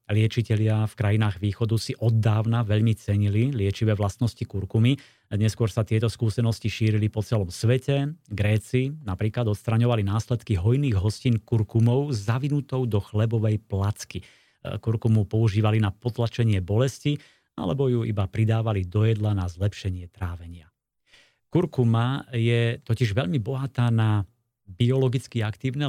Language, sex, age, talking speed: Slovak, male, 30-49, 120 wpm